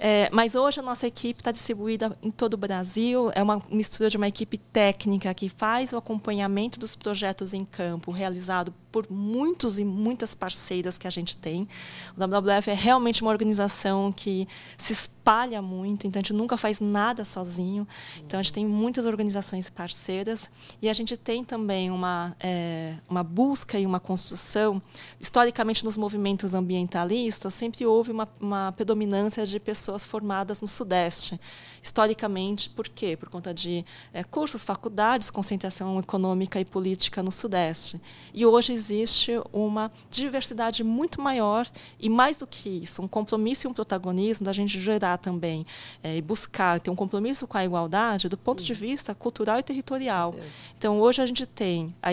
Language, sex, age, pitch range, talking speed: Portuguese, female, 20-39, 185-225 Hz, 165 wpm